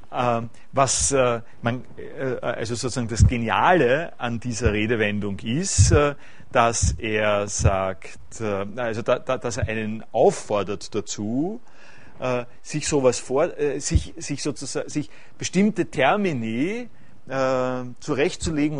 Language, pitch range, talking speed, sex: German, 115-145 Hz, 125 wpm, male